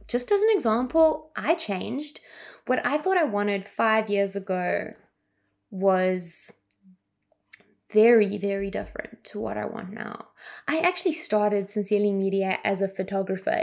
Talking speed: 135 wpm